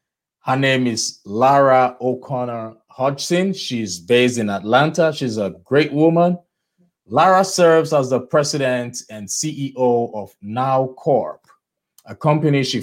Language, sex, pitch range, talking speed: English, male, 120-155 Hz, 125 wpm